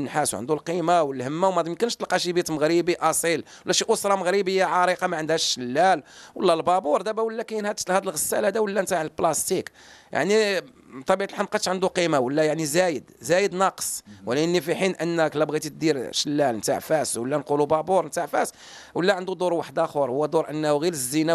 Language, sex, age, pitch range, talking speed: English, male, 40-59, 155-195 Hz, 190 wpm